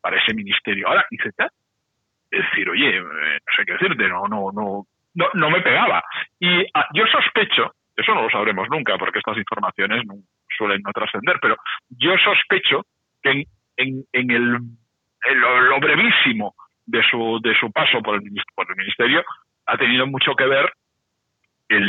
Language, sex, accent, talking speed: Spanish, male, Spanish, 165 wpm